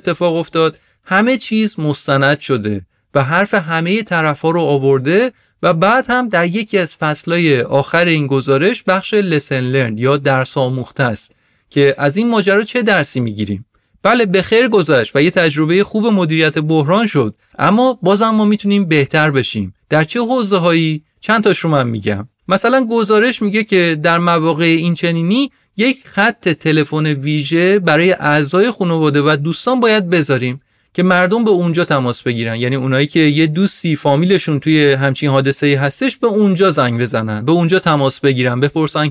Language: Persian